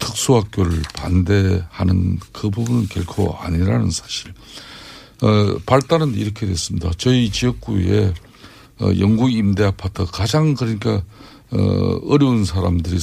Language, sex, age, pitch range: Korean, male, 50-69, 90-120 Hz